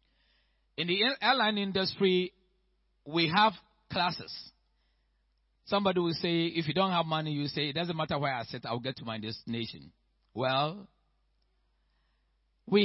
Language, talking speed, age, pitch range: English, 140 wpm, 50-69, 150-250 Hz